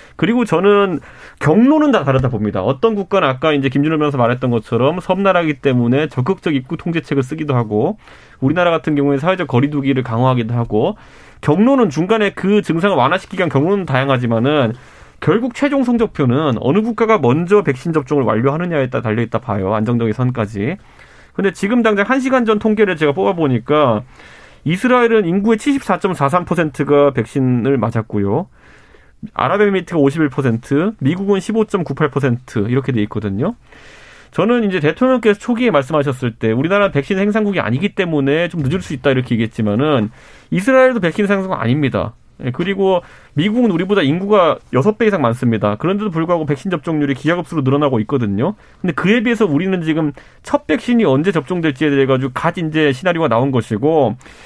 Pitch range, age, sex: 130-200 Hz, 30-49, male